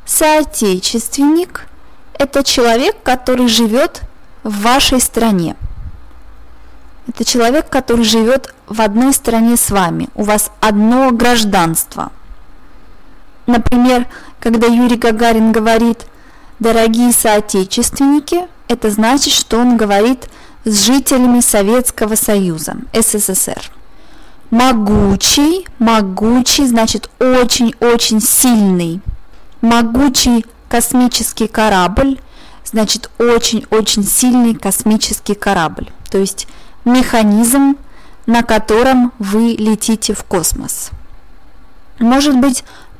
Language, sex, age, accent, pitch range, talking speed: Russian, female, 20-39, native, 210-255 Hz, 90 wpm